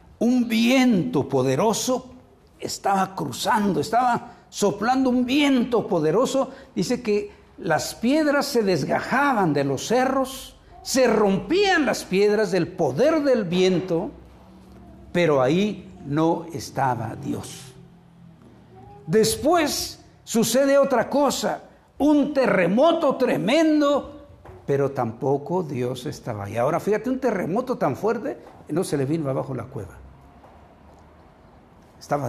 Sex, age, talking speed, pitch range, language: male, 60-79, 110 wpm, 155-260 Hz, Spanish